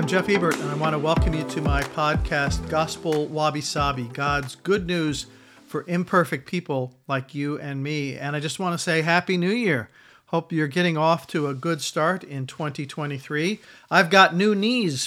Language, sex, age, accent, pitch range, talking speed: English, male, 50-69, American, 140-170 Hz, 190 wpm